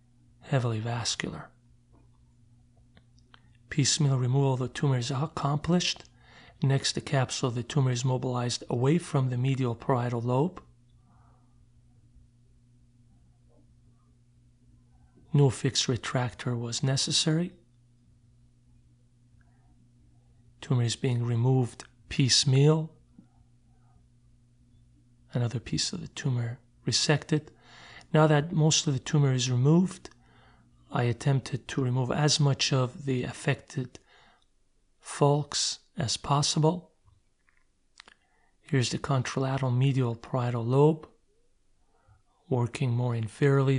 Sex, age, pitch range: male, 40-59, 120-140 Hz